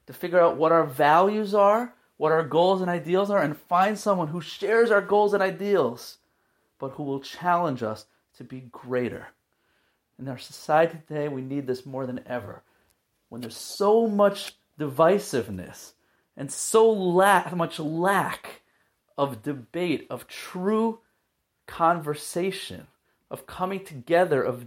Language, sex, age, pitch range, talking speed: English, male, 30-49, 125-170 Hz, 140 wpm